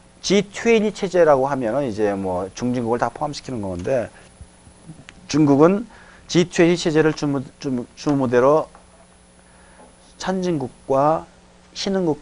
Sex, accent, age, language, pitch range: male, native, 40-59, Korean, 110-155 Hz